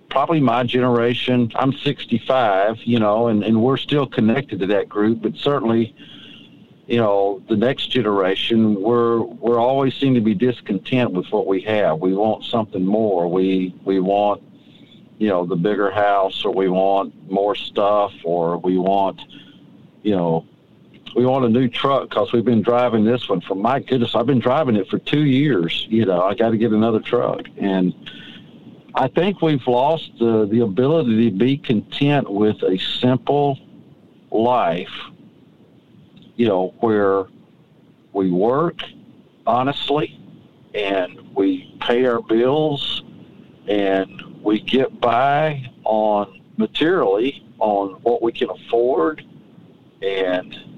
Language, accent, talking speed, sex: English, American, 145 wpm, male